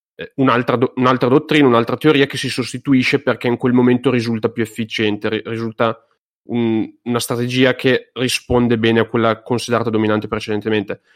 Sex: male